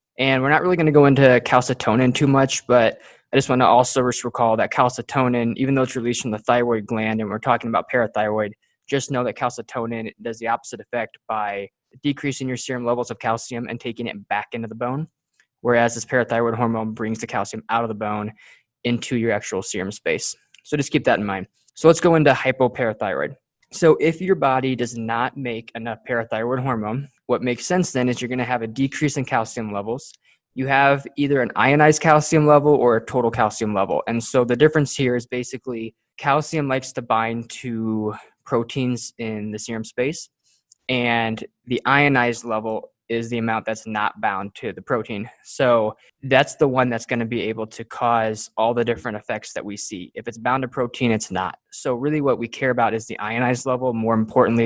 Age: 20-39